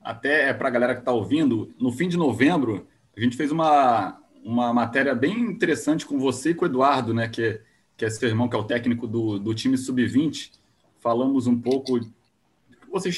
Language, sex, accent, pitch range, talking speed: Portuguese, male, Brazilian, 115-145 Hz, 205 wpm